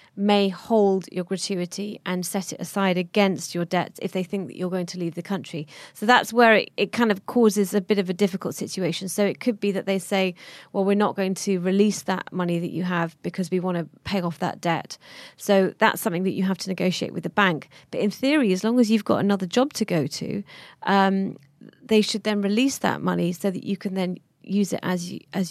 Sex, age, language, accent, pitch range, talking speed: female, 30-49, English, British, 180-210 Hz, 240 wpm